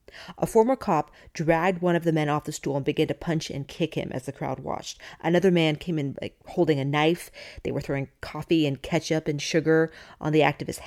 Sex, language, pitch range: female, English, 145-170 Hz